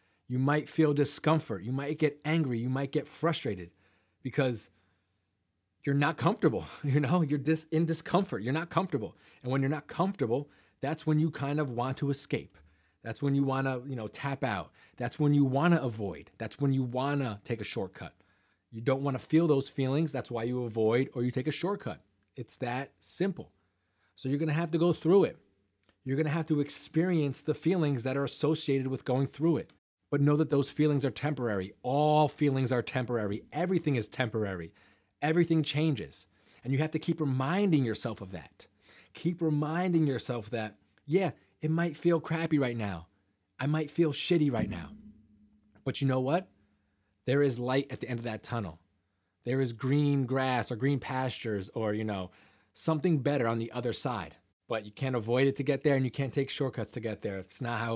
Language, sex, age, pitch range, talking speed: English, male, 30-49, 110-150 Hz, 200 wpm